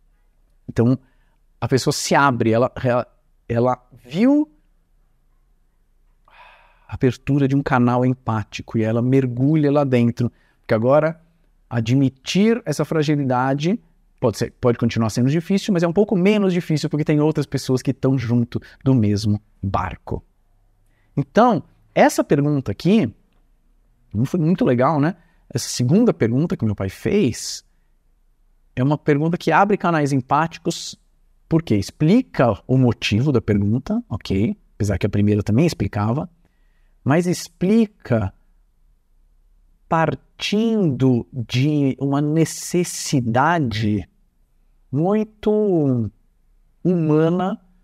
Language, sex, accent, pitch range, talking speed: Portuguese, male, Brazilian, 120-165 Hz, 110 wpm